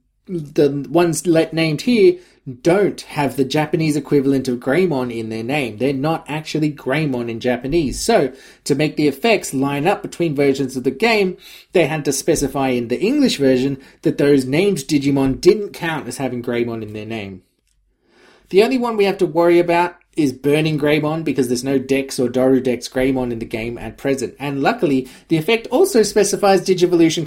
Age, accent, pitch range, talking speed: 20-39, Australian, 130-175 Hz, 185 wpm